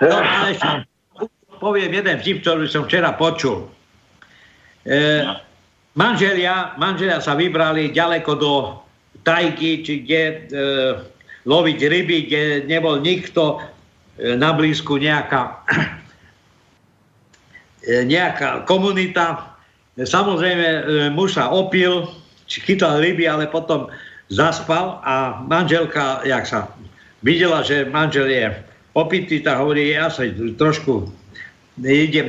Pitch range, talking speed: 140-175 Hz, 105 wpm